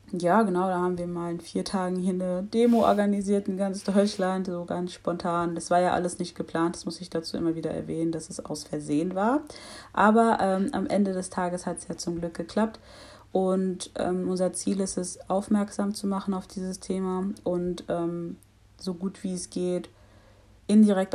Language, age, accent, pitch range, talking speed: German, 30-49, German, 170-190 Hz, 195 wpm